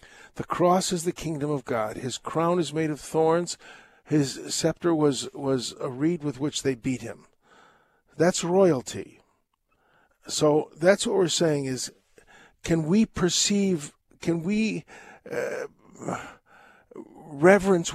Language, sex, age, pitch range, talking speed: English, male, 50-69, 130-175 Hz, 130 wpm